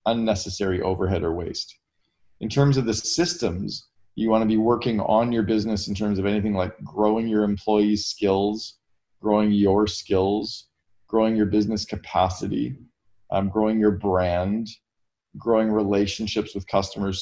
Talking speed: 145 wpm